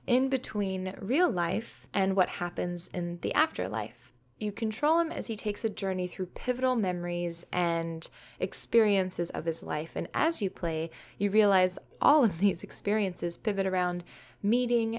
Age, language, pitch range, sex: 20-39, English, 175-215 Hz, female